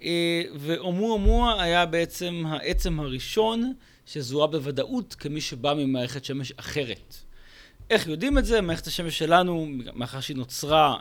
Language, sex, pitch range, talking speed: Hebrew, male, 125-180 Hz, 125 wpm